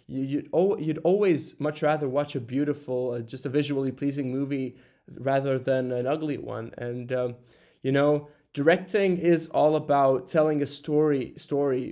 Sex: male